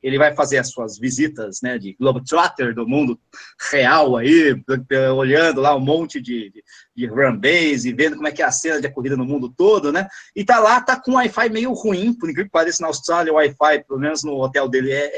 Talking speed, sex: 220 wpm, male